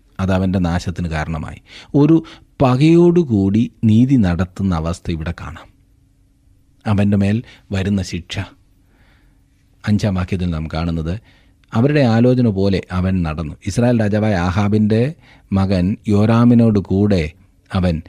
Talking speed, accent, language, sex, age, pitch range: 95 wpm, native, Malayalam, male, 40-59, 95-125 Hz